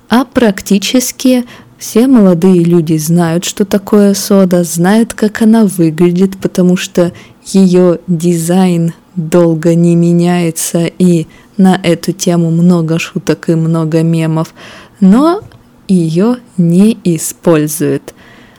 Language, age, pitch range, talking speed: Russian, 20-39, 170-215 Hz, 105 wpm